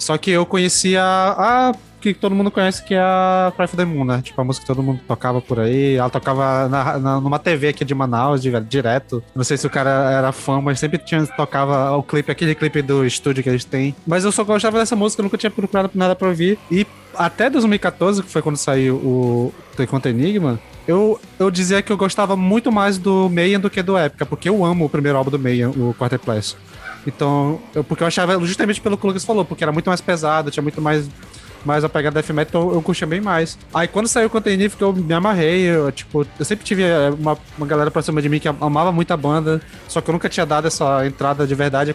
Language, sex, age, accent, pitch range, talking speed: Portuguese, male, 20-39, Brazilian, 140-180 Hz, 240 wpm